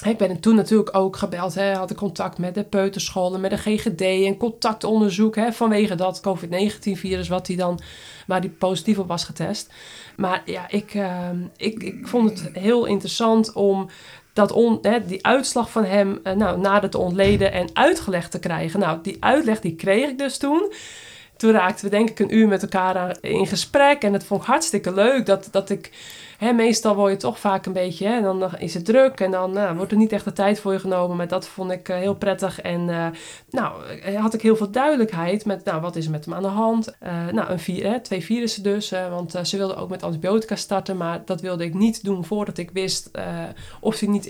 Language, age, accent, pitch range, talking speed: Dutch, 20-39, Dutch, 185-215 Hz, 220 wpm